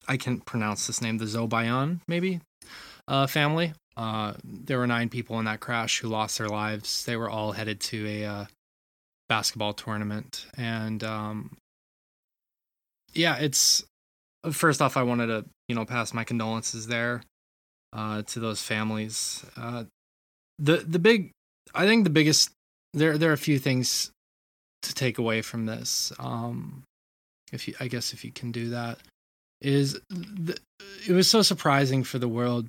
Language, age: English, 20-39